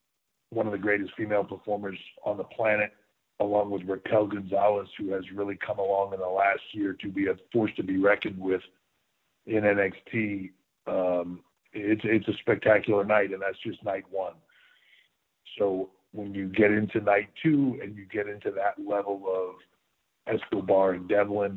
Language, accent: English, American